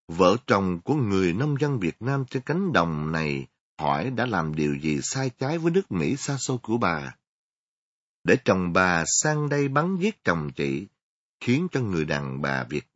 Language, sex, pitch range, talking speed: Vietnamese, male, 85-130 Hz, 190 wpm